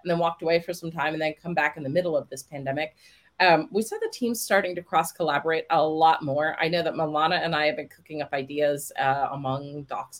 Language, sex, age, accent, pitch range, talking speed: English, female, 30-49, American, 150-180 Hz, 255 wpm